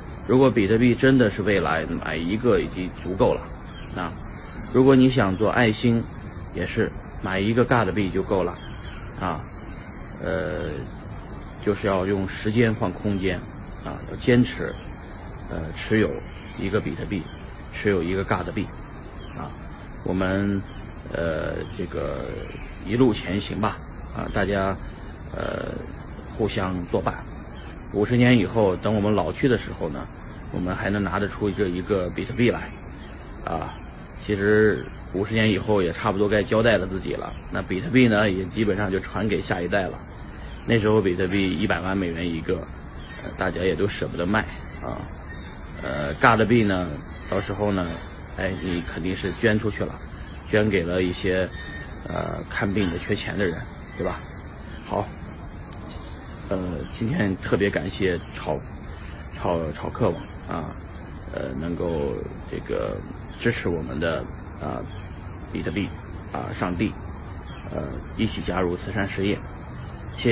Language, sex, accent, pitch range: Chinese, male, native, 85-105 Hz